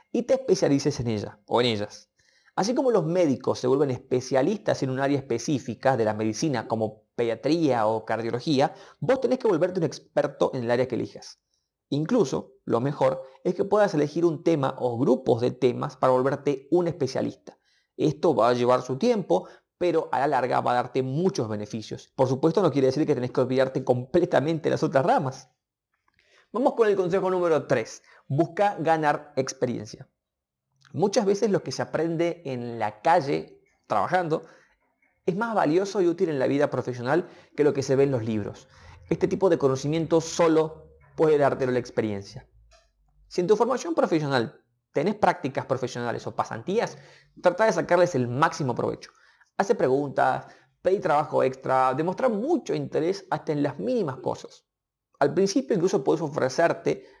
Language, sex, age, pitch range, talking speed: Spanish, male, 30-49, 125-175 Hz, 170 wpm